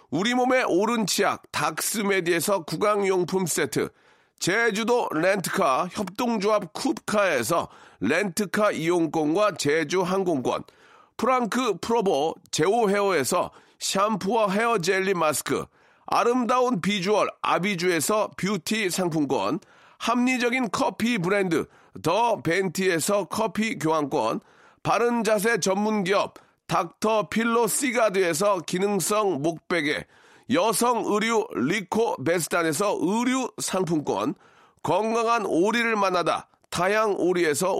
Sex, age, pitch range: male, 40-59, 185-230 Hz